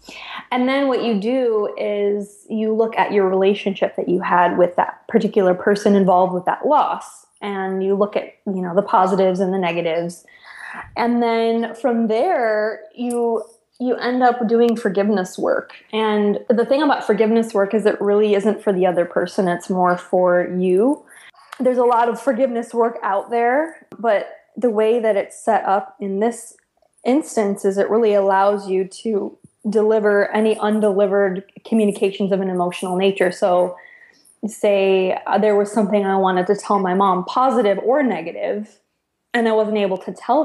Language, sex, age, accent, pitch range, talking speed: English, female, 20-39, American, 195-230 Hz, 170 wpm